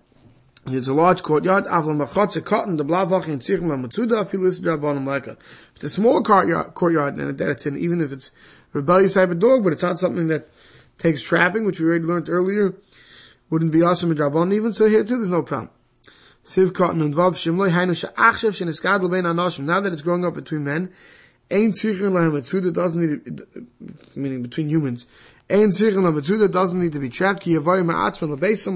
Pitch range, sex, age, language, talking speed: 155-195 Hz, male, 20-39, English, 180 wpm